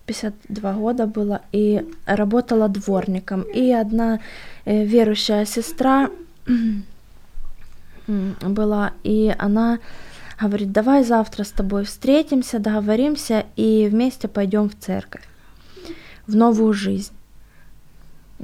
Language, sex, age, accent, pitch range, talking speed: Ukrainian, female, 20-39, native, 205-235 Hz, 90 wpm